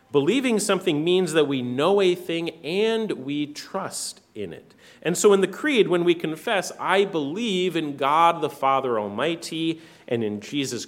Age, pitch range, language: 40-59, 120-175 Hz, English